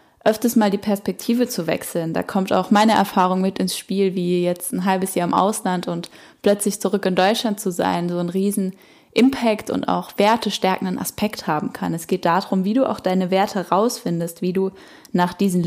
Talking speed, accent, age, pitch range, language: 200 wpm, German, 10-29, 185-230 Hz, German